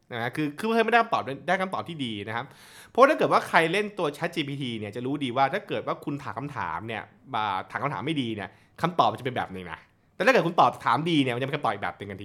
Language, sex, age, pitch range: Thai, male, 20-39, 115-160 Hz